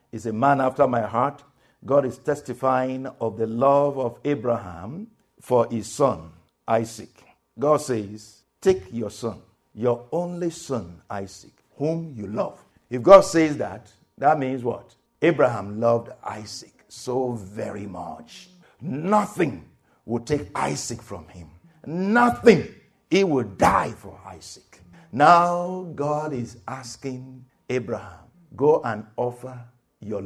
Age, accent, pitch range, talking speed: 60-79, Nigerian, 110-180 Hz, 125 wpm